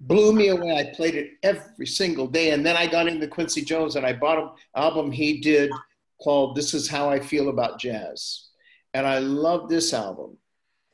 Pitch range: 130-160 Hz